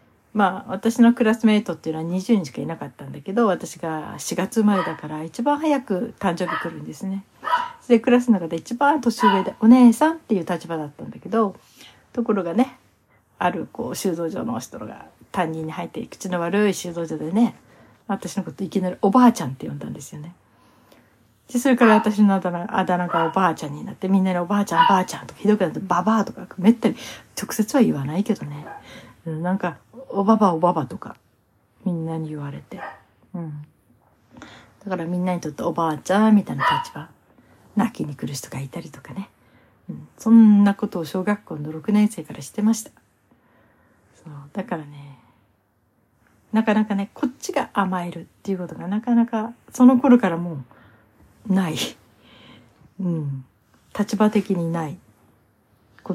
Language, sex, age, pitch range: Japanese, female, 60-79, 160-215 Hz